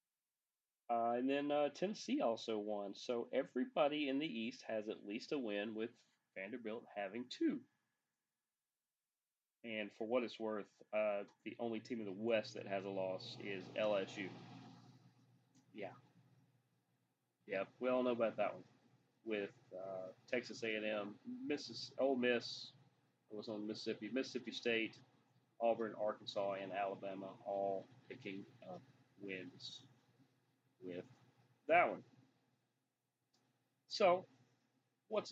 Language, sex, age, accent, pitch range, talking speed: English, male, 30-49, American, 105-135 Hz, 125 wpm